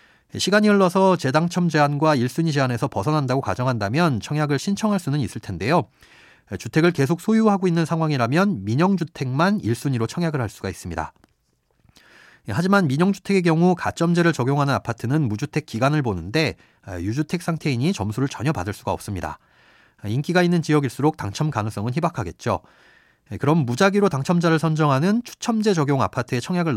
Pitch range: 120-175 Hz